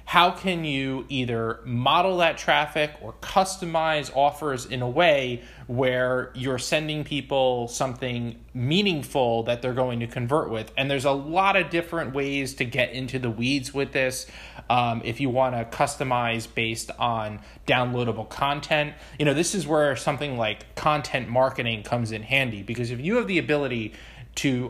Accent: American